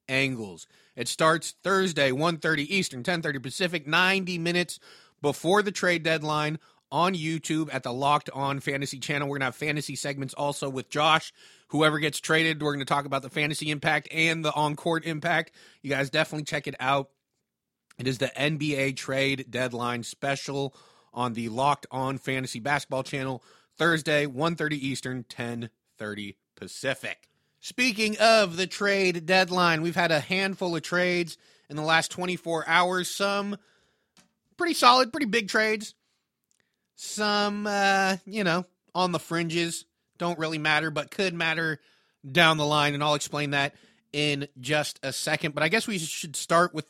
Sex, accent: male, American